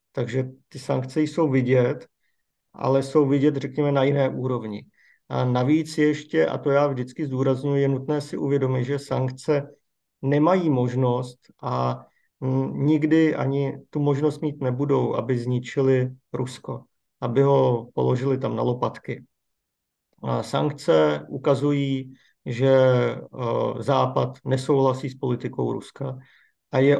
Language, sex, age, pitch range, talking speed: Slovak, male, 50-69, 130-145 Hz, 120 wpm